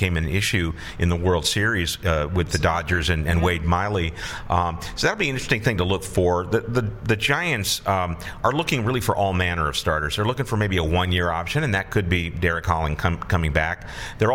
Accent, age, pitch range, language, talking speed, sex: American, 50-69, 85-110 Hz, English, 220 wpm, male